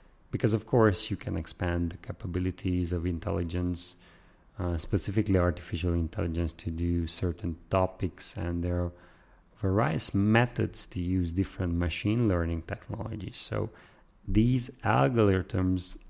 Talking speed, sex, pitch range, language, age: 120 wpm, male, 90-105 Hz, English, 30-49